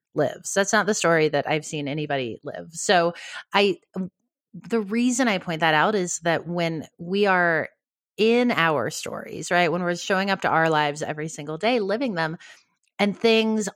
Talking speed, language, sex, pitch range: 180 wpm, English, female, 155-200 Hz